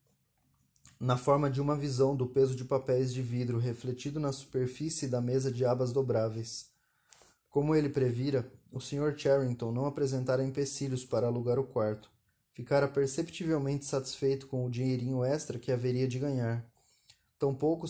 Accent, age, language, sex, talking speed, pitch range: Brazilian, 20-39, Portuguese, male, 150 wpm, 125-140 Hz